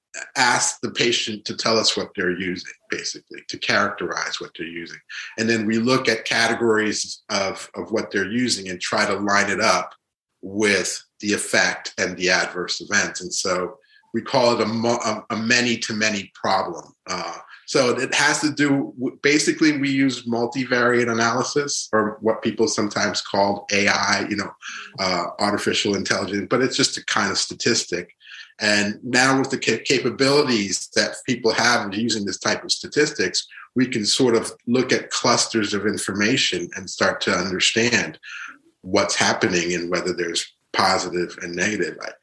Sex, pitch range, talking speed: male, 100-120 Hz, 160 wpm